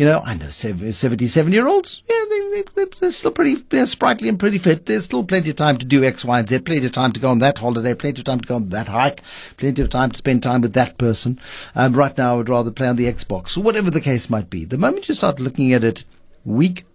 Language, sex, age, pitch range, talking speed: English, male, 60-79, 115-165 Hz, 275 wpm